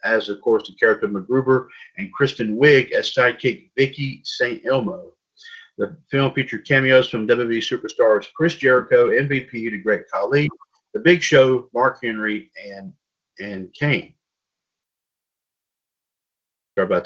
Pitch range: 120-200 Hz